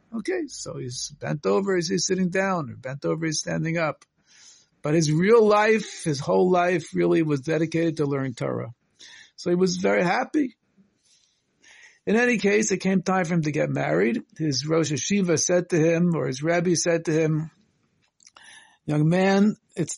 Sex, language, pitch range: male, English, 145-195 Hz